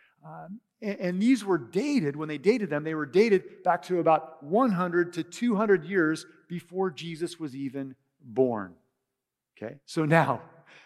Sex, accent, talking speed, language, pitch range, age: male, American, 150 wpm, English, 140-185 Hz, 40-59